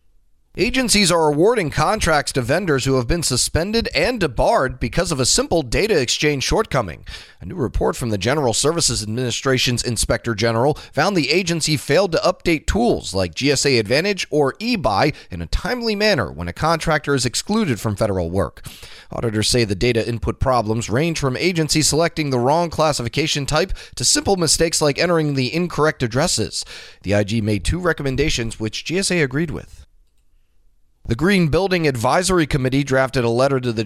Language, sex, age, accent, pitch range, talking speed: English, male, 30-49, American, 115-165 Hz, 165 wpm